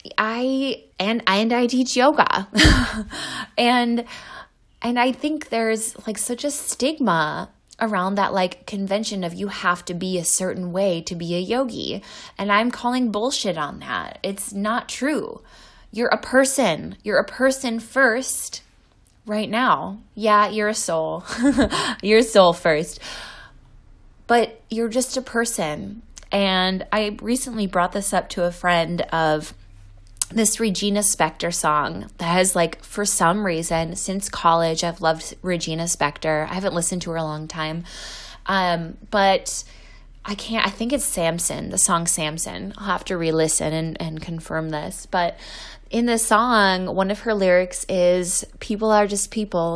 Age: 20-39